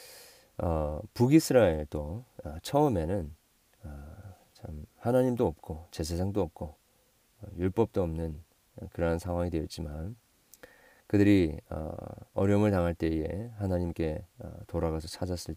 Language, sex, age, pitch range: Korean, male, 40-59, 80-105 Hz